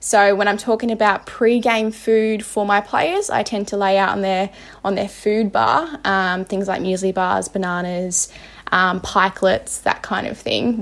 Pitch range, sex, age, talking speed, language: 190-220 Hz, female, 10-29, 185 wpm, English